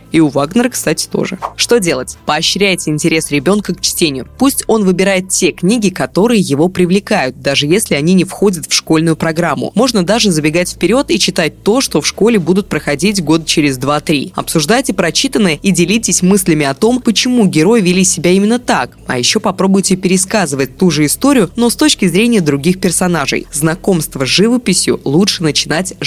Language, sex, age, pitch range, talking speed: Russian, female, 20-39, 155-205 Hz, 170 wpm